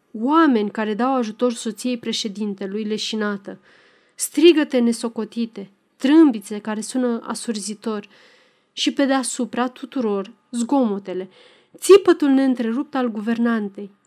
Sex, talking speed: female, 95 wpm